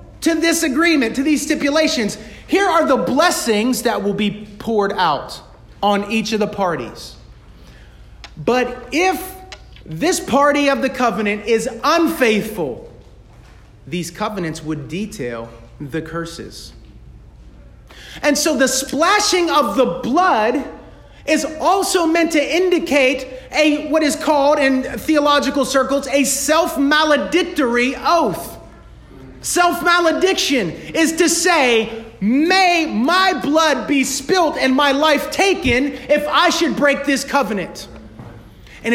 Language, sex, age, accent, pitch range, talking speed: English, male, 40-59, American, 205-310 Hz, 120 wpm